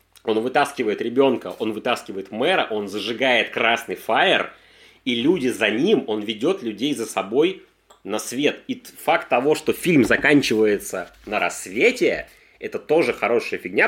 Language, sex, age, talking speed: Russian, male, 30-49, 145 wpm